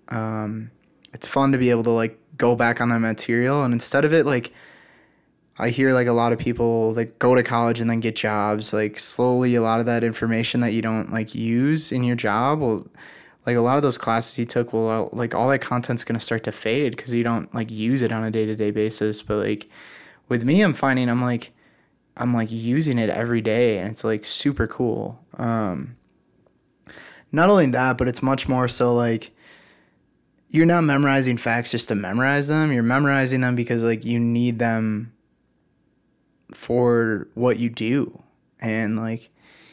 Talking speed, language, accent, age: 195 wpm, English, American, 20-39